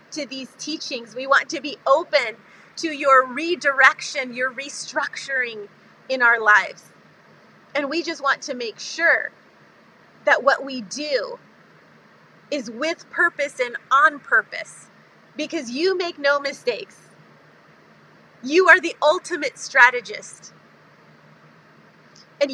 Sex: female